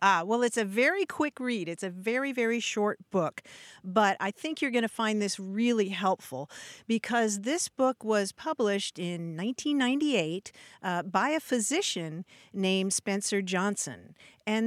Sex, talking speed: female, 155 wpm